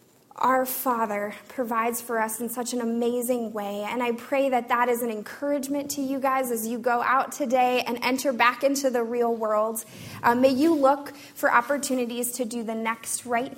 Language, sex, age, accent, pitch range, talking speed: English, female, 20-39, American, 235-275 Hz, 195 wpm